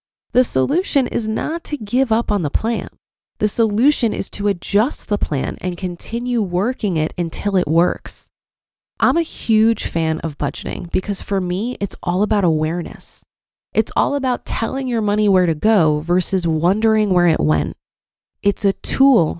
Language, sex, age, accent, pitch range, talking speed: English, female, 20-39, American, 180-250 Hz, 165 wpm